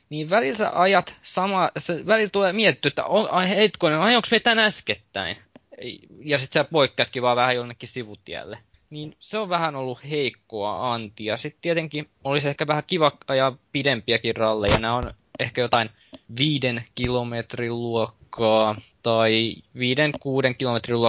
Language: Finnish